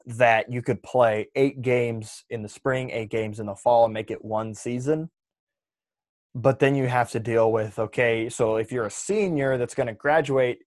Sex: male